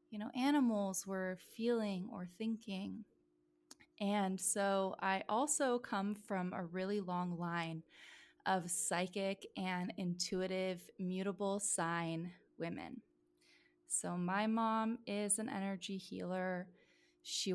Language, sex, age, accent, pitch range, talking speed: English, female, 20-39, American, 180-215 Hz, 110 wpm